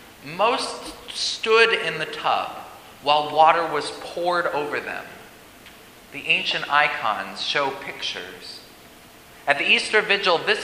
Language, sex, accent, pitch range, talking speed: English, male, American, 140-180 Hz, 120 wpm